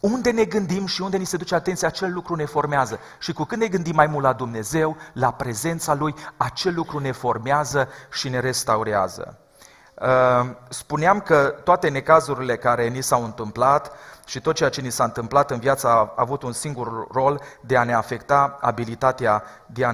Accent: native